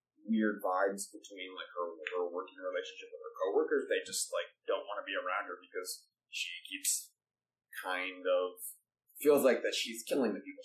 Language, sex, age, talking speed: English, male, 20-39, 180 wpm